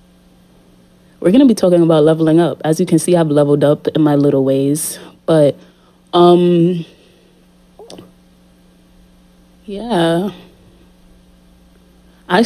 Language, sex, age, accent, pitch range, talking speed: English, female, 30-49, American, 130-160 Hz, 105 wpm